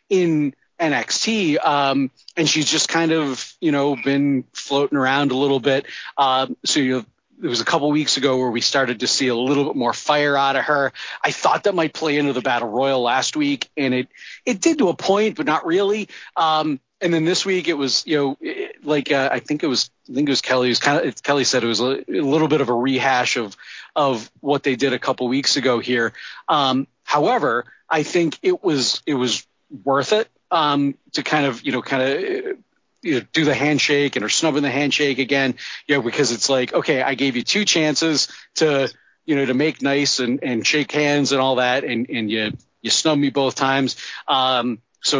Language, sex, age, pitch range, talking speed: English, male, 30-49, 130-155 Hz, 220 wpm